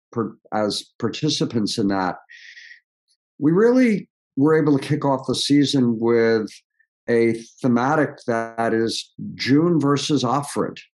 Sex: male